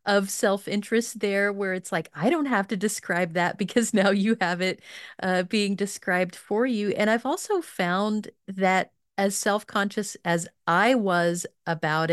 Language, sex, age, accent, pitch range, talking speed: English, female, 30-49, American, 175-210 Hz, 165 wpm